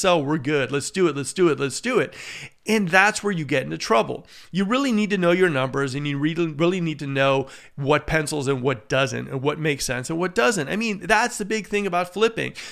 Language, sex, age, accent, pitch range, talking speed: English, male, 40-59, American, 145-180 Hz, 245 wpm